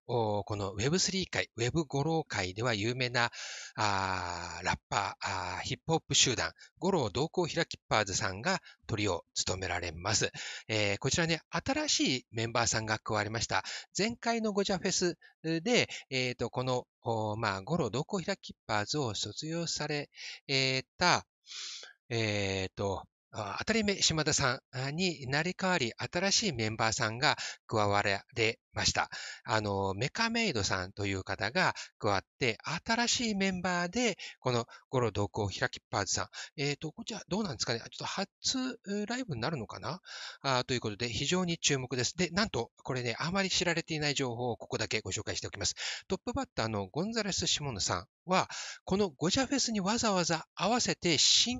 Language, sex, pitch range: Japanese, male, 110-185 Hz